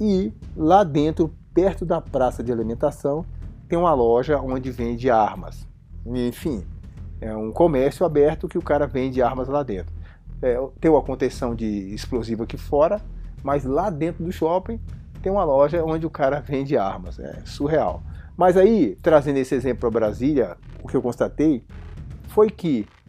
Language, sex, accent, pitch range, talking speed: Portuguese, male, Brazilian, 110-160 Hz, 160 wpm